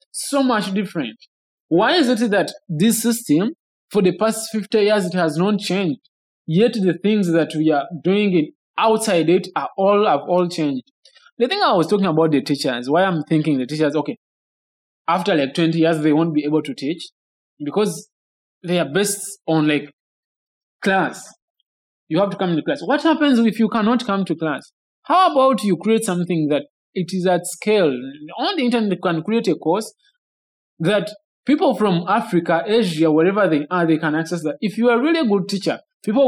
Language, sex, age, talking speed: English, male, 20-39, 190 wpm